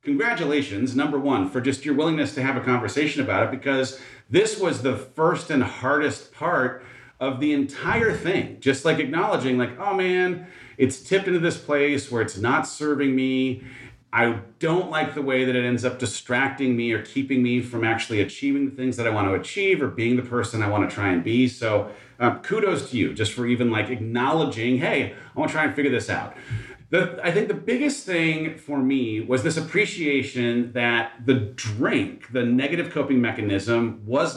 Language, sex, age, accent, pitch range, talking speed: English, male, 40-59, American, 125-160 Hz, 195 wpm